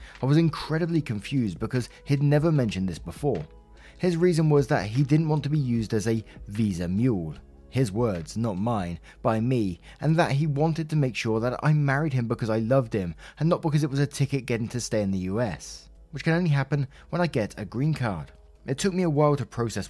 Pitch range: 110-150 Hz